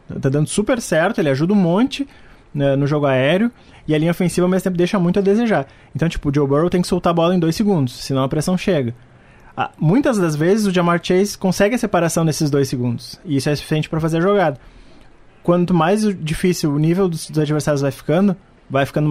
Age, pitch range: 20-39, 135-170 Hz